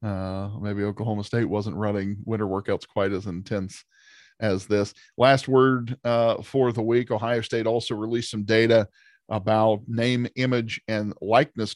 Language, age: English, 40-59